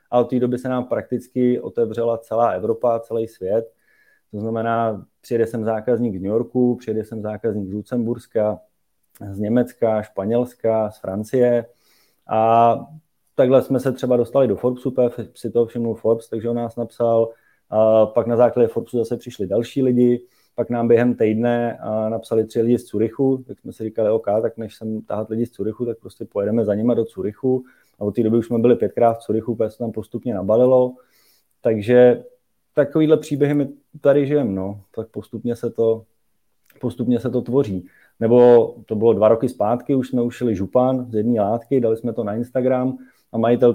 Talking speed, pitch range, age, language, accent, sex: 180 wpm, 110-125 Hz, 20-39, Czech, native, male